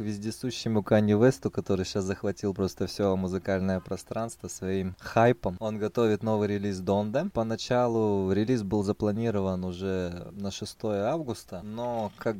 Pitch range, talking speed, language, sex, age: 100-120 Hz, 130 wpm, Russian, male, 20-39